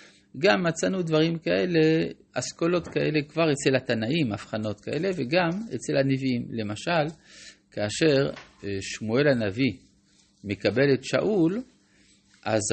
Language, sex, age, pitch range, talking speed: Hebrew, male, 50-69, 100-160 Hz, 105 wpm